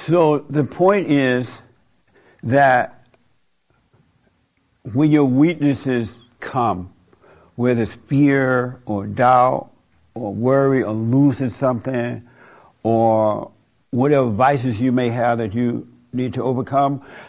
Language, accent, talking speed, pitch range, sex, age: English, American, 105 wpm, 115-140 Hz, male, 60-79